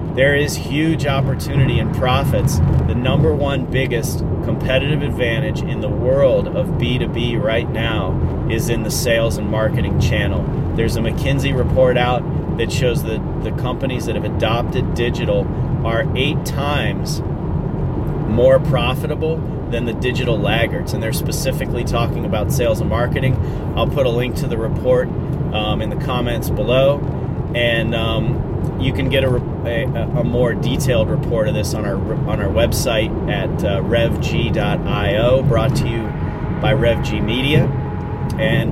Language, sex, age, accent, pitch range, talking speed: English, male, 30-49, American, 120-145 Hz, 150 wpm